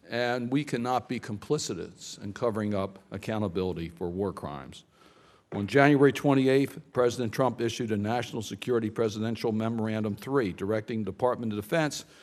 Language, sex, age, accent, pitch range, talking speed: English, male, 60-79, American, 115-150 Hz, 140 wpm